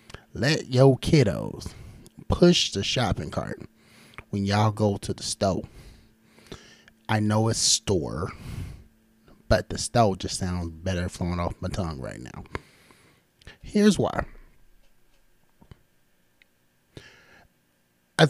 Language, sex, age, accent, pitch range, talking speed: English, male, 30-49, American, 90-110 Hz, 105 wpm